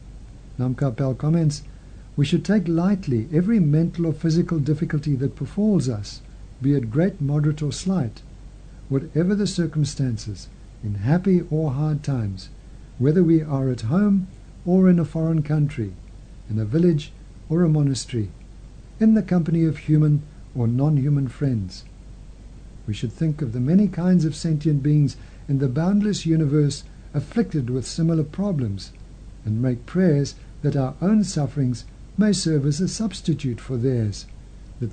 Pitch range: 120-165 Hz